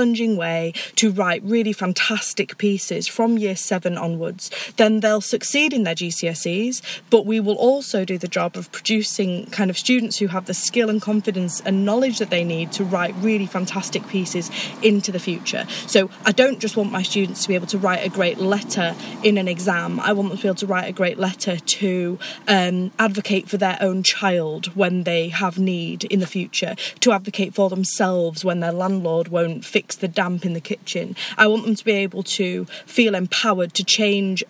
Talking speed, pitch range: 200 wpm, 180-215 Hz